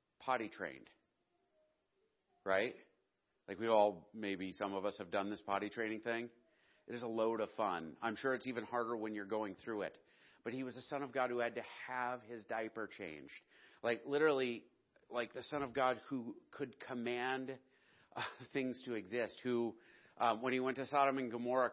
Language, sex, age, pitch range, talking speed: English, male, 40-59, 110-130 Hz, 190 wpm